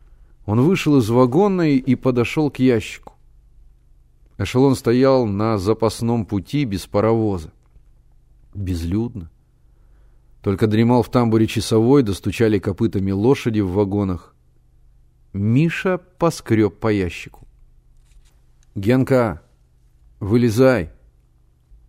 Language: Russian